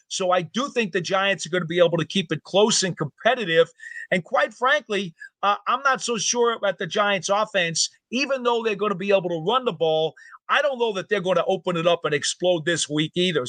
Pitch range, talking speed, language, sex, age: 175-220 Hz, 245 wpm, English, male, 40-59